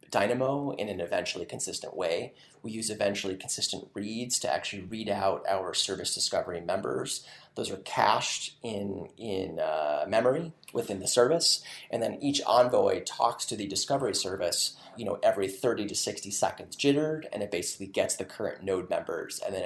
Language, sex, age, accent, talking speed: English, male, 30-49, American, 170 wpm